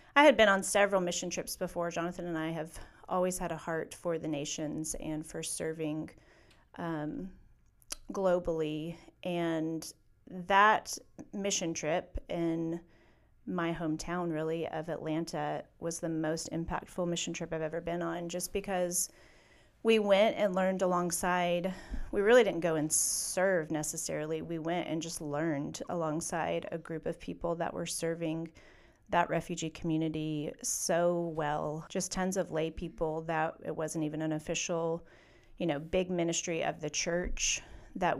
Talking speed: 150 wpm